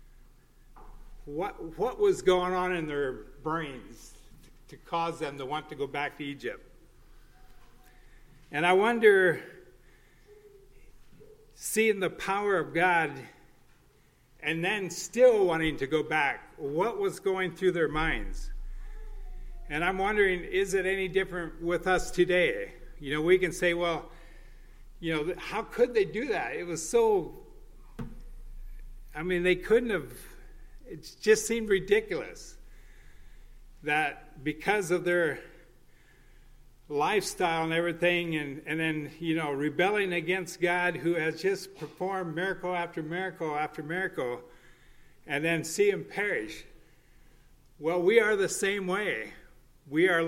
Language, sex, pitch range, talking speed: English, male, 160-200 Hz, 135 wpm